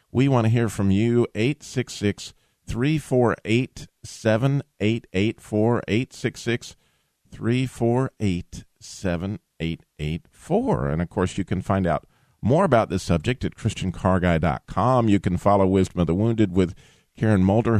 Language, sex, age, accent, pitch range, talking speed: English, male, 50-69, American, 95-125 Hz, 105 wpm